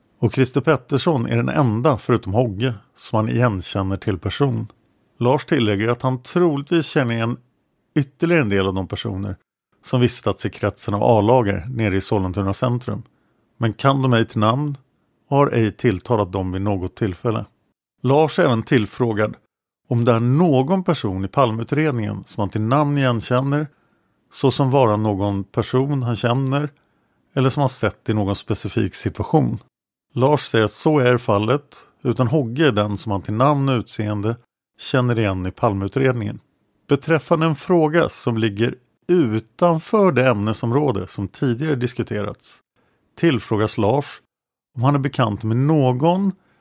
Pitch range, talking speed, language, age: 105-140 Hz, 150 wpm, Swedish, 50-69